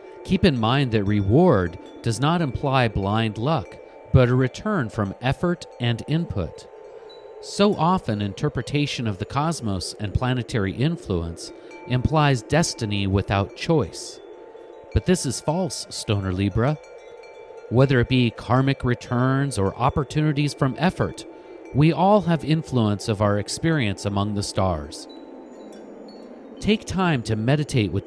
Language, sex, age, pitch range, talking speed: English, male, 40-59, 110-165 Hz, 130 wpm